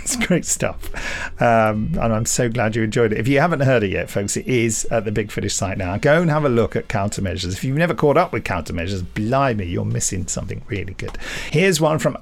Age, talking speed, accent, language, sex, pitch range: 50-69, 240 wpm, British, English, male, 110-165 Hz